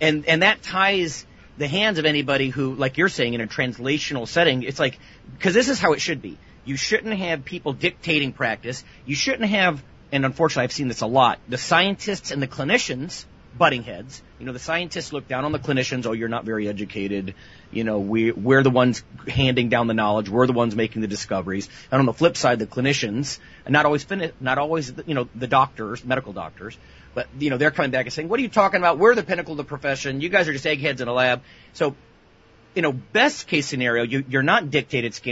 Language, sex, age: English, male, 30-49